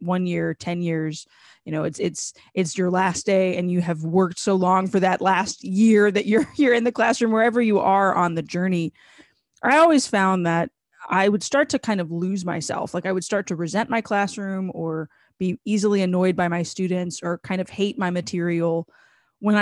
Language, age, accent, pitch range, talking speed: English, 20-39, American, 170-205 Hz, 210 wpm